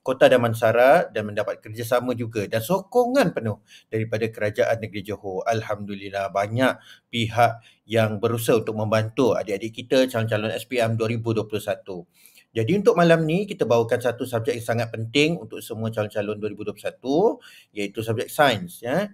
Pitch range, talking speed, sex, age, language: 110-145 Hz, 135 wpm, male, 30-49, Malay